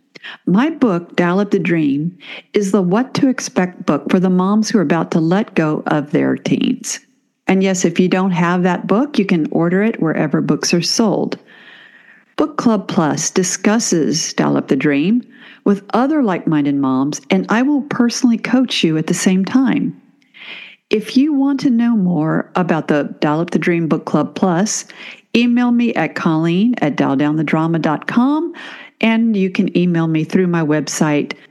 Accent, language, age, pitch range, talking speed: American, English, 50-69, 175-245 Hz, 170 wpm